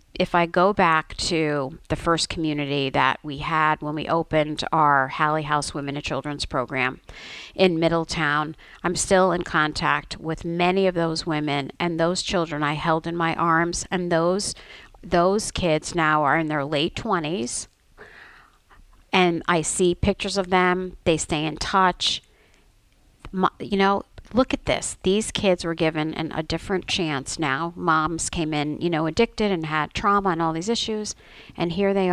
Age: 50-69